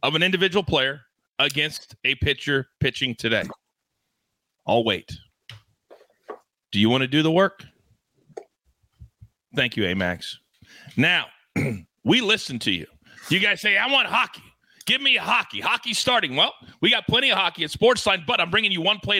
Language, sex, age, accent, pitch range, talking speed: English, male, 30-49, American, 150-215 Hz, 160 wpm